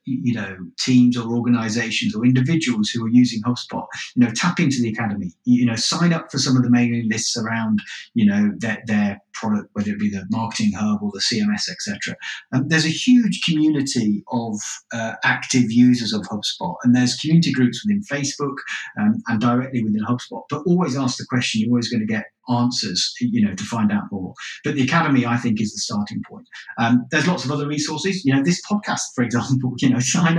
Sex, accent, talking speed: male, British, 210 wpm